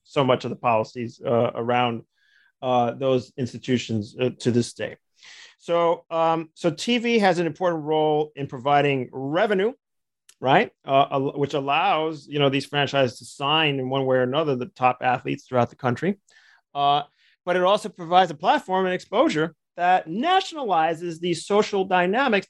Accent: American